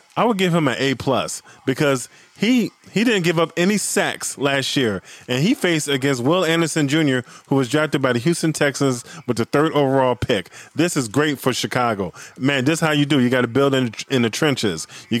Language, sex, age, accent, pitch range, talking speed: English, male, 20-39, American, 125-150 Hz, 215 wpm